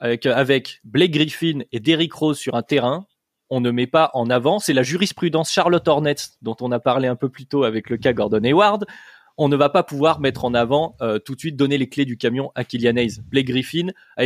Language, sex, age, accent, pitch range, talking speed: French, male, 20-39, French, 120-155 Hz, 230 wpm